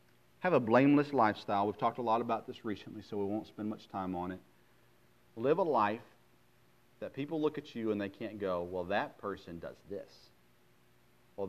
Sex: male